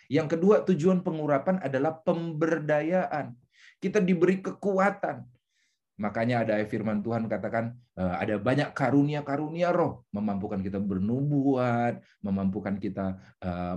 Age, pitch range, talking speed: 30-49, 130-180 Hz, 105 wpm